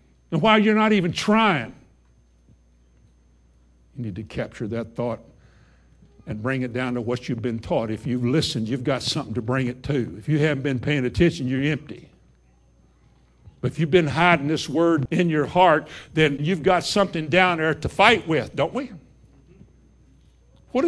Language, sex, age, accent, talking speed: English, male, 60-79, American, 175 wpm